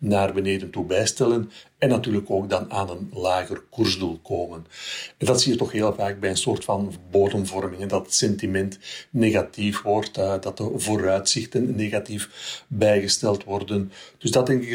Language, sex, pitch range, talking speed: Dutch, male, 100-115 Hz, 165 wpm